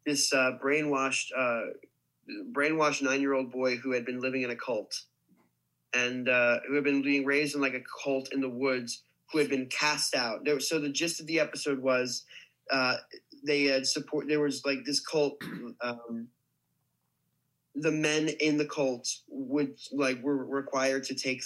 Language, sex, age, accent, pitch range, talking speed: English, male, 20-39, American, 125-145 Hz, 170 wpm